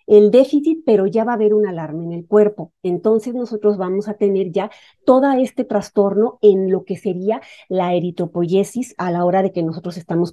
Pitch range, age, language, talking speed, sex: 180-220 Hz, 40-59, Spanish, 200 wpm, female